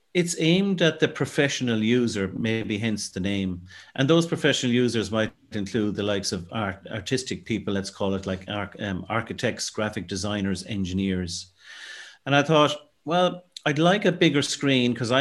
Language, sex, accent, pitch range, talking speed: English, male, Irish, 105-140 Hz, 160 wpm